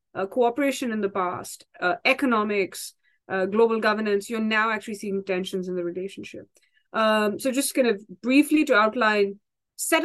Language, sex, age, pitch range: English, female, 20-39, 195-255 Hz